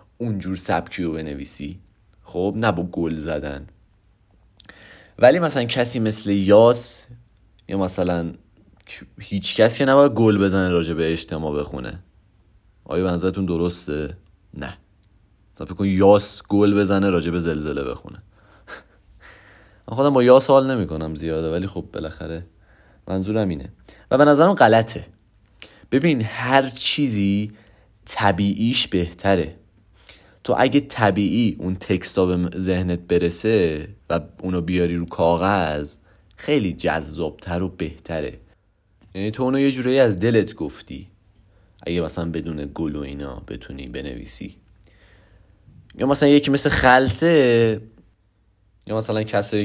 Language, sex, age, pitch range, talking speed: Persian, male, 30-49, 90-105 Hz, 120 wpm